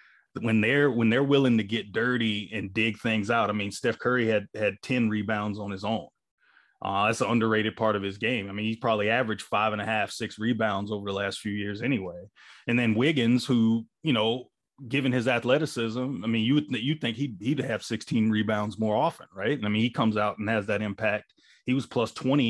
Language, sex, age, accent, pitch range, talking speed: English, male, 30-49, American, 105-120 Hz, 225 wpm